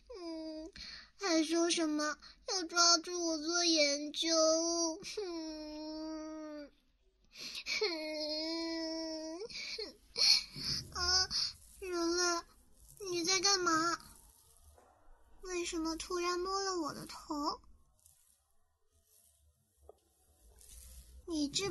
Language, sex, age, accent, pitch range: Chinese, male, 10-29, native, 290-345 Hz